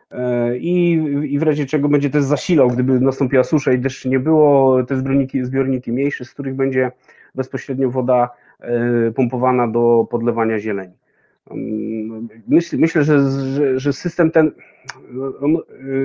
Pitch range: 120-140 Hz